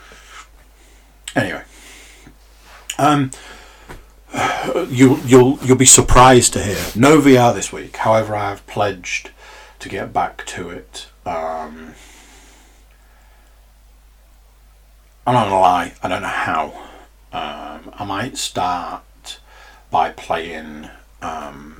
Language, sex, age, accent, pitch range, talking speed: English, male, 40-59, British, 80-130 Hz, 100 wpm